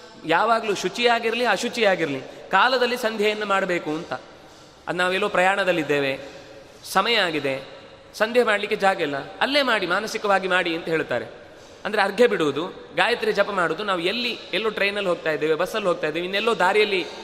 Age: 30-49